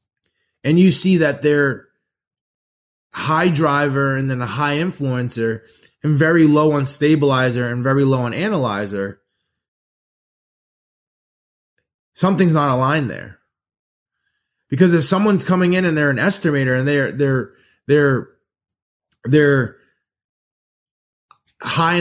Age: 20-39